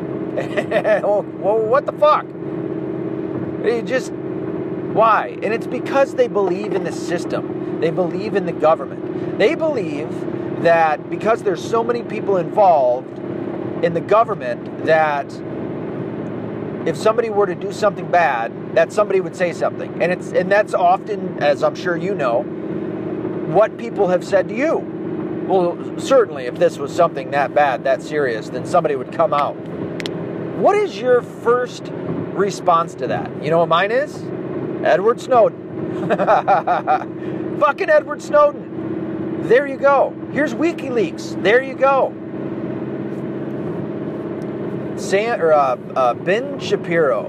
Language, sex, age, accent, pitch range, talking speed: English, male, 40-59, American, 170-240 Hz, 130 wpm